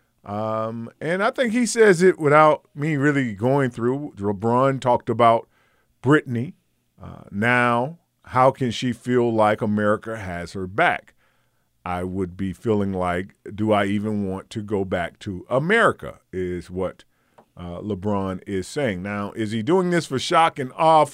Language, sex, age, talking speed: English, male, 40-59, 155 wpm